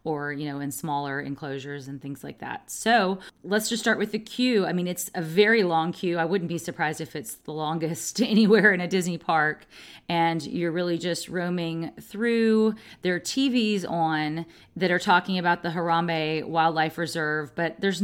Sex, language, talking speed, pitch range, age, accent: female, English, 190 wpm, 155-185 Hz, 30-49, American